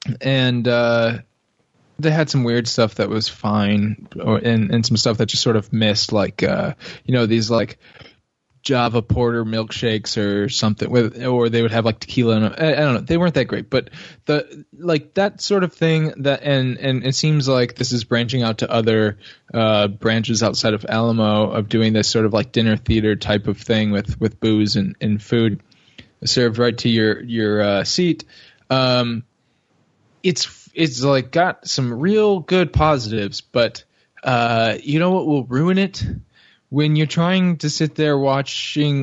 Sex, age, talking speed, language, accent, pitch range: male, 20-39, 180 wpm, English, American, 115-150 Hz